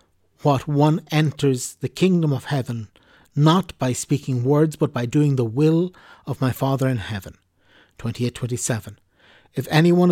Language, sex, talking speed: English, male, 155 wpm